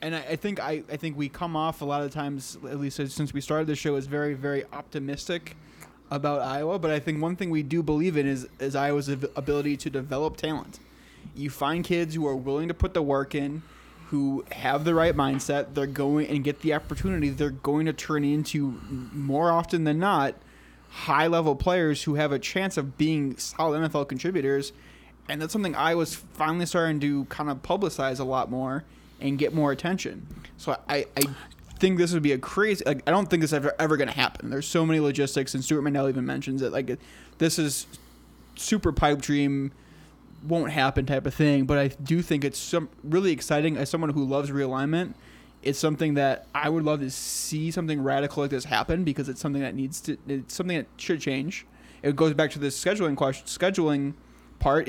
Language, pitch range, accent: English, 140-160 Hz, American